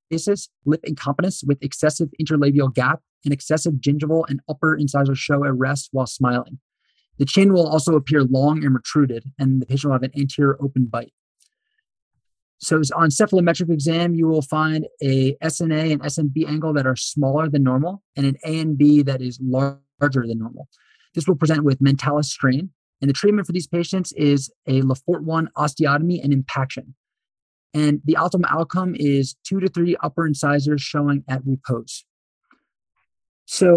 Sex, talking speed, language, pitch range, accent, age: male, 165 wpm, English, 135-160 Hz, American, 20-39